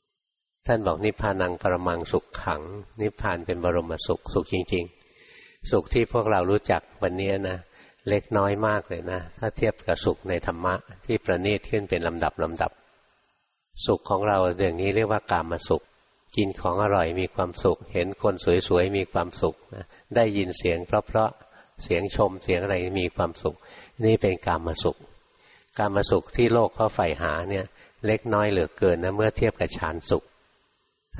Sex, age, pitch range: male, 60-79, 90-105 Hz